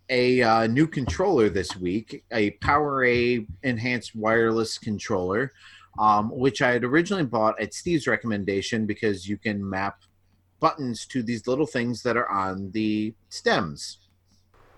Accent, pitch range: American, 105-130 Hz